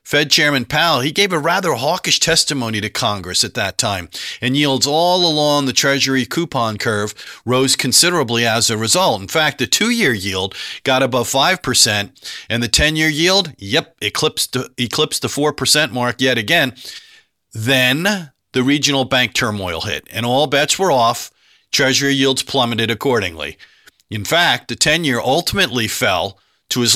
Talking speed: 155 wpm